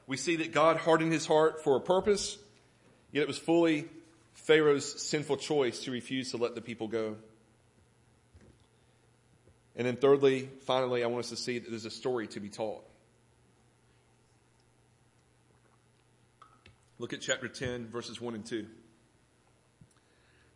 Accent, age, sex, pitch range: American, 40-59, male, 115-155 Hz